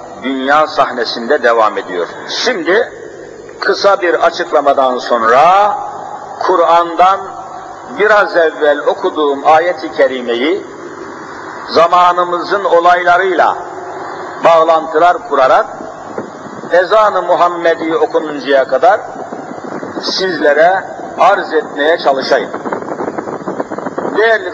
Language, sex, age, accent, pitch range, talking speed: Turkish, male, 60-79, native, 160-215 Hz, 70 wpm